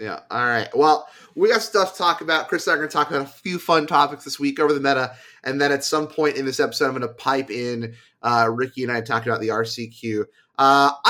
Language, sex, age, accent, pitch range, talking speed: English, male, 30-49, American, 130-170 Hz, 265 wpm